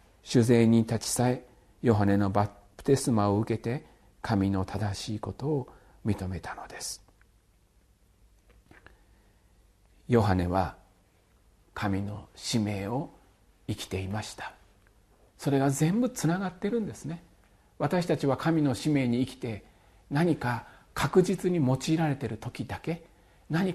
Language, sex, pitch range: Japanese, male, 105-160 Hz